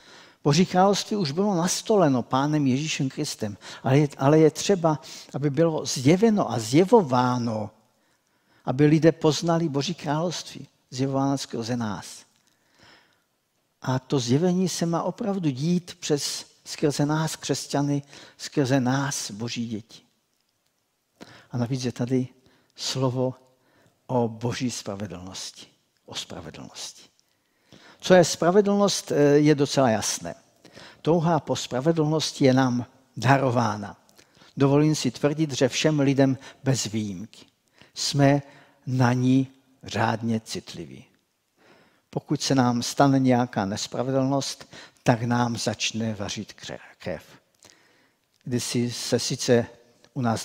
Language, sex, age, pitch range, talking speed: Czech, male, 50-69, 120-150 Hz, 110 wpm